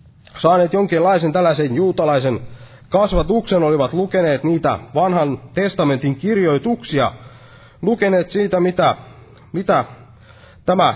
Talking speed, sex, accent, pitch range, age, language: 90 wpm, male, native, 125-185 Hz, 30-49, Finnish